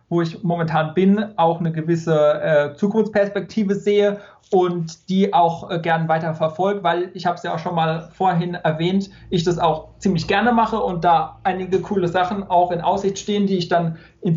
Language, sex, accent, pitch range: German, male, German, 160-190 Hz